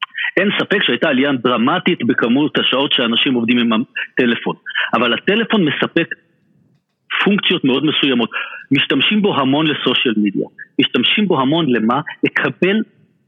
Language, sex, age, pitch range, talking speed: Hebrew, male, 50-69, 125-175 Hz, 120 wpm